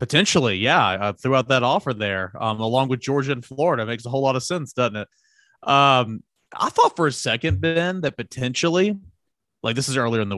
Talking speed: 220 wpm